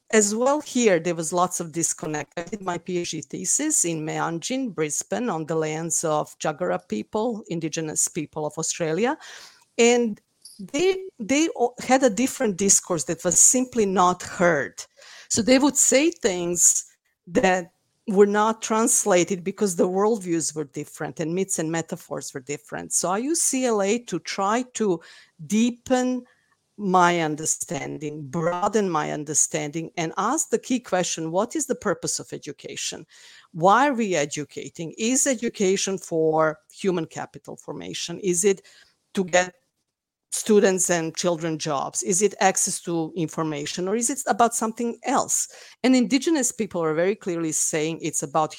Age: 50-69